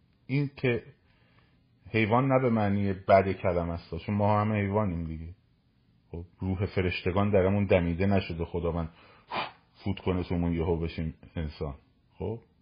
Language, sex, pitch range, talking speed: Persian, male, 90-125 Hz, 130 wpm